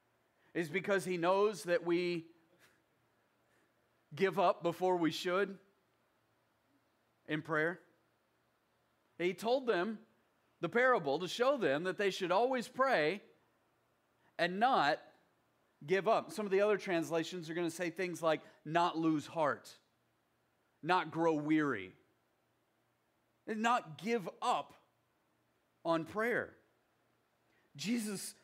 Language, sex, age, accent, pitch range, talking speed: English, male, 40-59, American, 155-215 Hz, 115 wpm